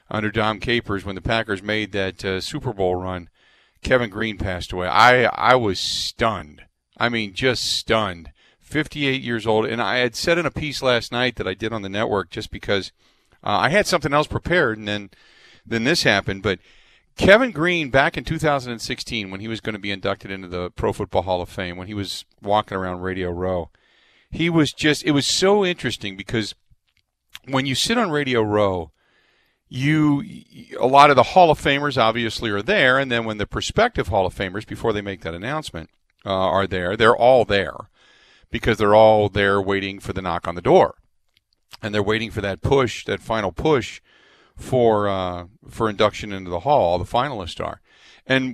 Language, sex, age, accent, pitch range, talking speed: English, male, 40-59, American, 95-125 Hz, 195 wpm